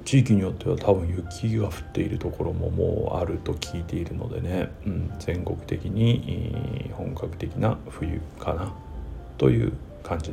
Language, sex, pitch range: Japanese, male, 85-120 Hz